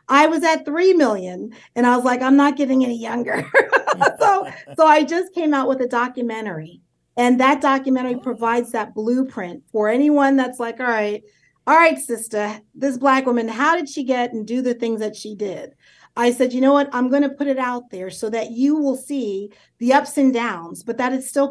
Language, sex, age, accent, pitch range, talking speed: English, female, 40-59, American, 225-285 Hz, 215 wpm